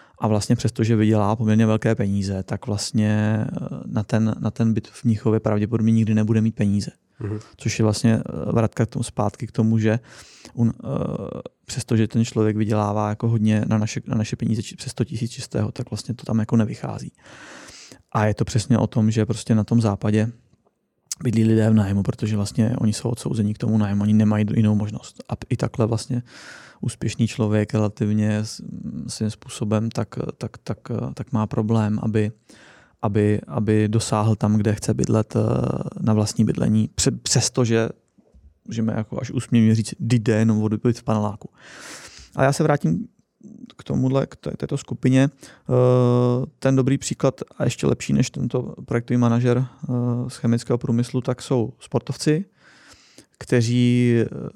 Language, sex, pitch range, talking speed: Czech, male, 110-120 Hz, 155 wpm